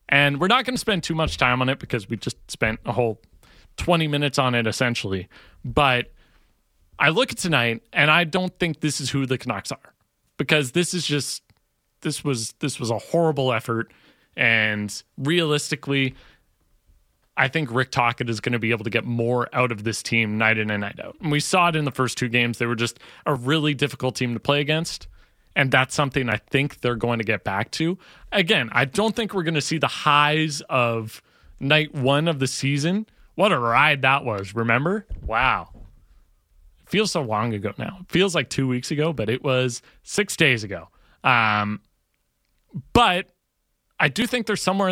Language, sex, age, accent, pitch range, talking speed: English, male, 30-49, American, 115-160 Hz, 200 wpm